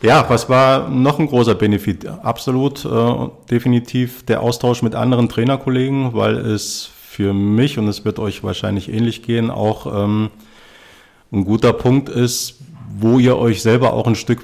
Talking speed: 160 wpm